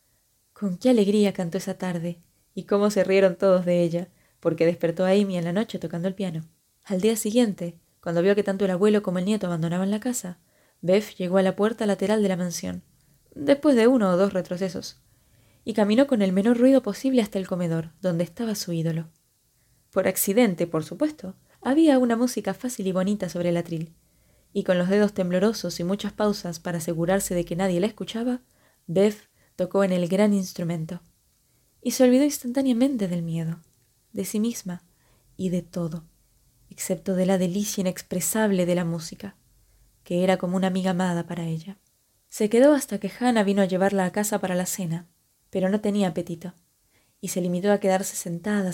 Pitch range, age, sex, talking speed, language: 175-210 Hz, 20-39, female, 185 wpm, Spanish